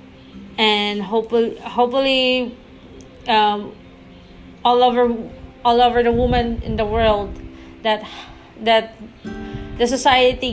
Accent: Filipino